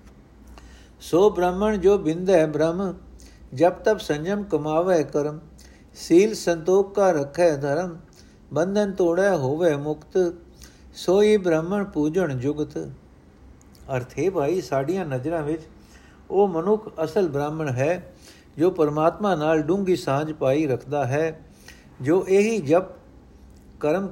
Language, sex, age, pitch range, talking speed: Punjabi, male, 60-79, 135-180 Hz, 115 wpm